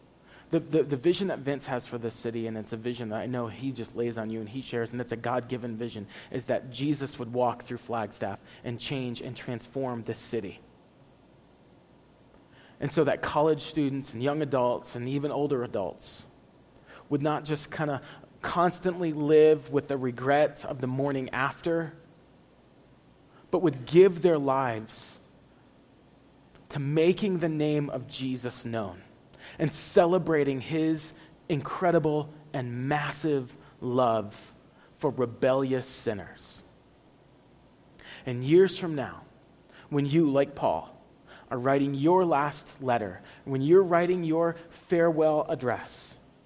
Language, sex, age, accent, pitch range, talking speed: English, male, 30-49, American, 125-155 Hz, 140 wpm